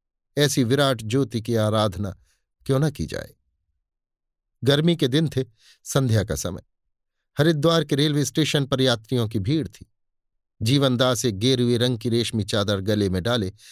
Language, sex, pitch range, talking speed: Hindi, male, 110-145 Hz, 155 wpm